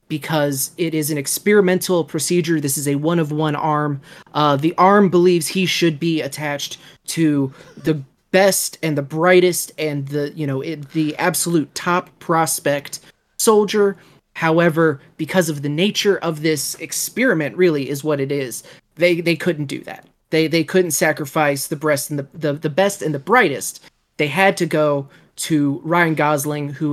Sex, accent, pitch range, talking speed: male, American, 145-170 Hz, 150 wpm